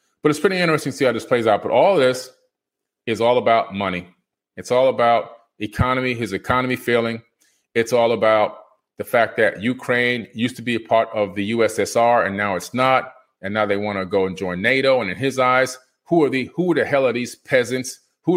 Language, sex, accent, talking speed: English, male, American, 220 wpm